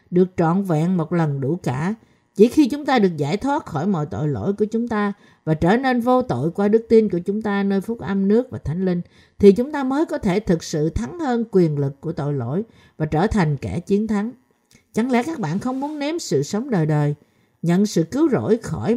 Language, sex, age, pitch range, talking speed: Vietnamese, female, 50-69, 160-230 Hz, 240 wpm